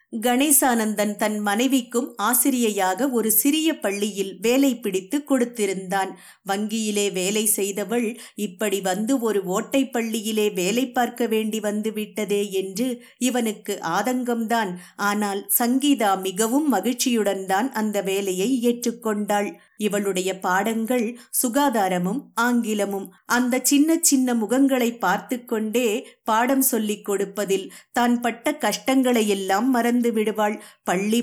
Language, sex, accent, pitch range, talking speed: English, female, Indian, 200-245 Hz, 90 wpm